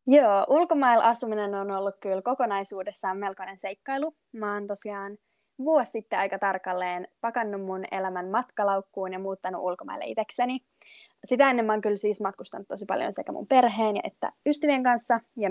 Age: 20-39